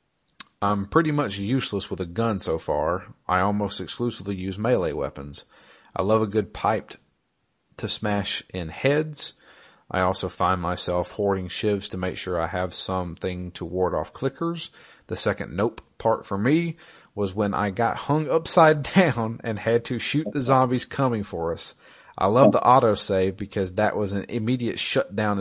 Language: English